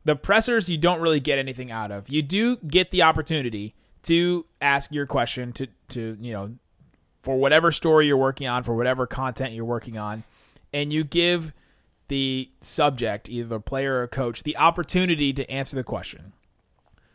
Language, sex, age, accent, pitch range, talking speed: English, male, 30-49, American, 120-155 Hz, 180 wpm